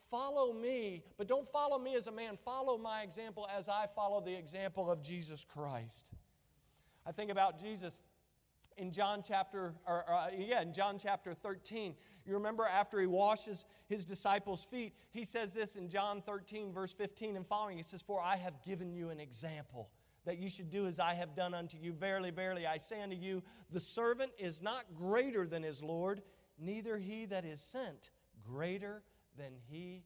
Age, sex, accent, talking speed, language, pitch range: 40-59, male, American, 190 wpm, English, 170-205 Hz